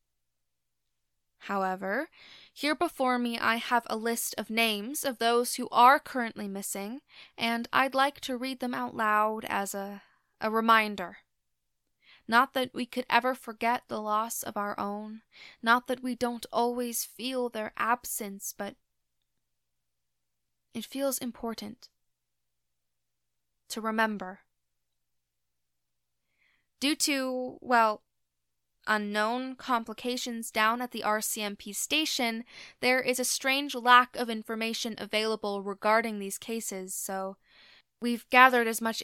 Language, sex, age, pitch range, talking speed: English, female, 20-39, 185-245 Hz, 120 wpm